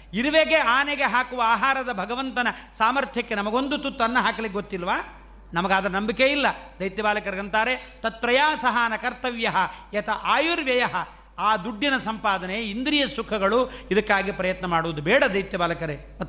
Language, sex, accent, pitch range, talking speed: Kannada, male, native, 190-250 Hz, 115 wpm